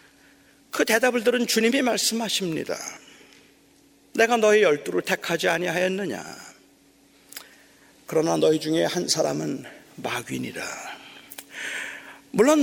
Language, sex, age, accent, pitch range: Korean, male, 40-59, native, 225-300 Hz